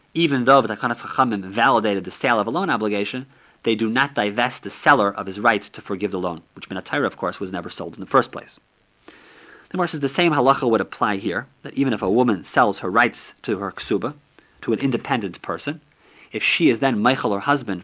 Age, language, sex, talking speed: 40-59, English, male, 215 wpm